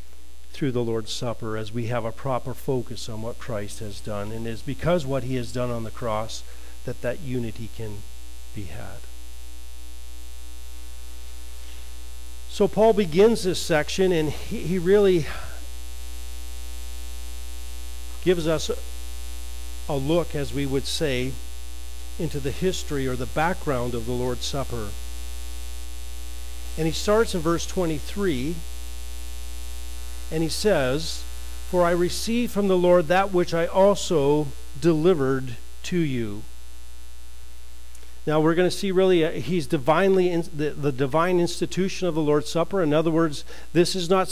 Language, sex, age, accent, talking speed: English, male, 50-69, American, 140 wpm